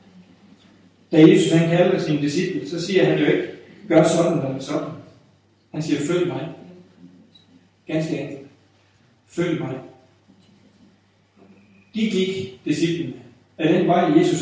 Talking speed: 125 wpm